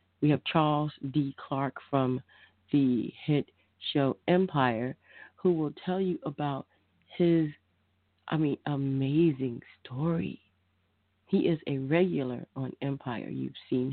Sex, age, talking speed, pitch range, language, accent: female, 30-49, 120 wpm, 130-155 Hz, English, American